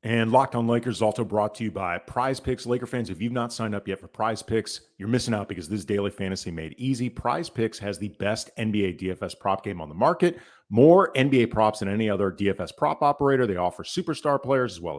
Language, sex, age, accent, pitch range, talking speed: English, male, 40-59, American, 100-130 Hz, 240 wpm